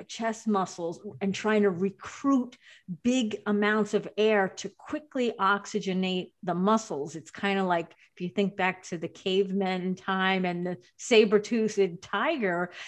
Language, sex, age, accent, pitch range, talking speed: English, female, 40-59, American, 185-225 Hz, 145 wpm